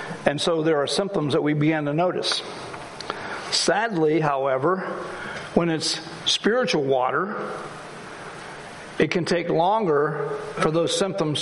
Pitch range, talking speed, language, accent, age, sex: 155-185 Hz, 120 wpm, English, American, 60-79, male